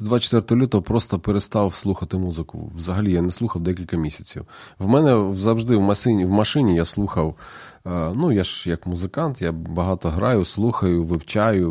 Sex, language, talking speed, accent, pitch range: male, Ukrainian, 160 wpm, native, 85-115 Hz